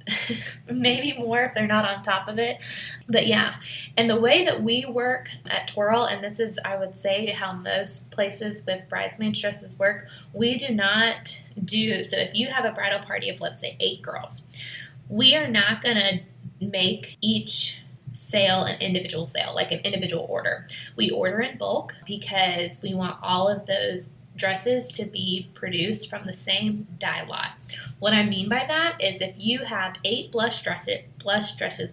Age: 20-39